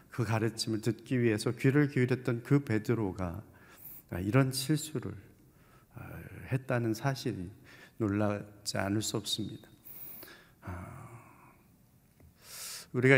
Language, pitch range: Korean, 110-140 Hz